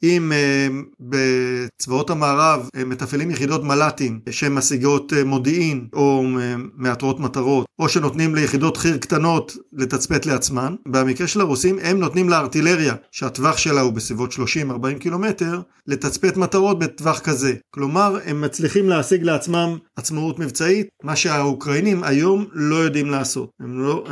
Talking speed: 125 wpm